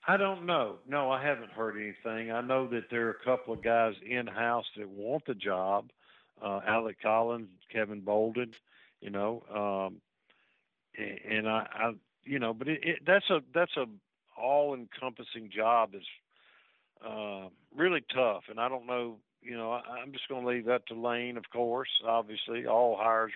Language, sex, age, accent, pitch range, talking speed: English, male, 50-69, American, 105-120 Hz, 175 wpm